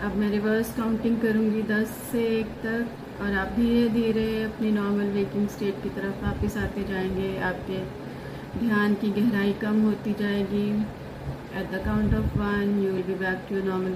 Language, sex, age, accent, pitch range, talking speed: Hindi, female, 30-49, native, 200-215 Hz, 170 wpm